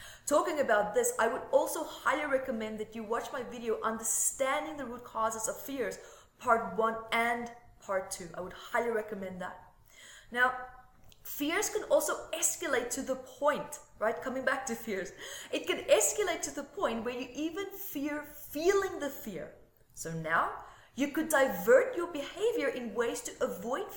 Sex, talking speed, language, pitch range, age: female, 165 wpm, English, 220-315 Hz, 20-39